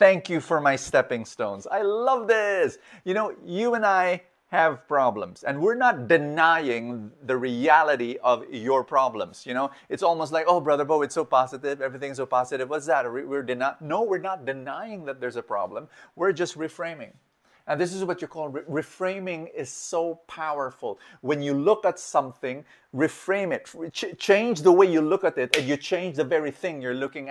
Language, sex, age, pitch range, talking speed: English, male, 30-49, 145-185 Hz, 195 wpm